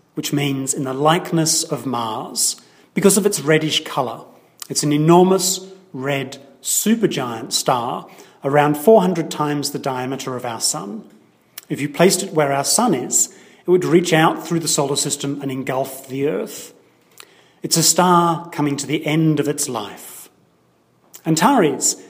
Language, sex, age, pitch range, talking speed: English, male, 40-59, 135-165 Hz, 155 wpm